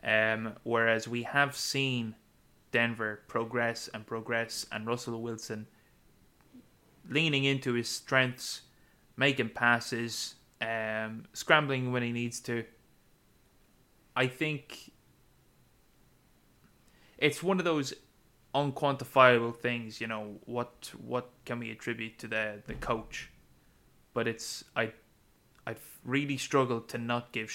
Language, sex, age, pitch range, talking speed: English, male, 20-39, 115-130 Hz, 115 wpm